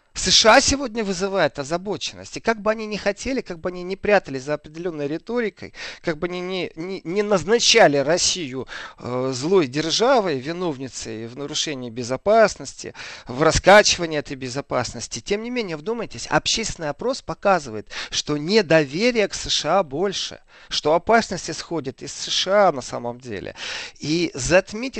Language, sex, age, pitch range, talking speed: Russian, male, 40-59, 140-195 Hz, 135 wpm